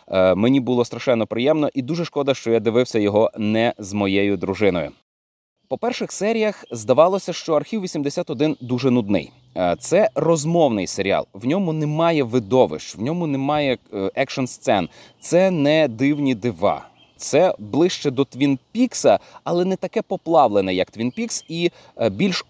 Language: Ukrainian